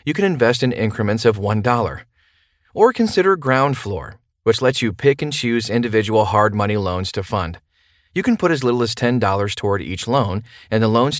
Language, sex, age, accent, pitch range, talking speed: English, male, 30-49, American, 100-130 Hz, 195 wpm